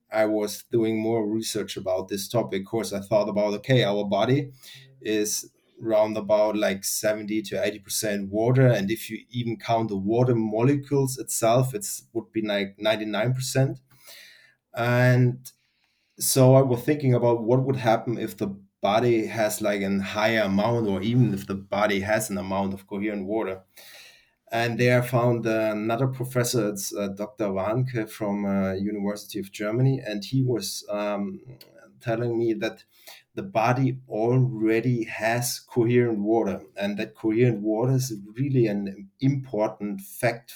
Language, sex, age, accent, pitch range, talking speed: English, male, 30-49, German, 105-120 Hz, 155 wpm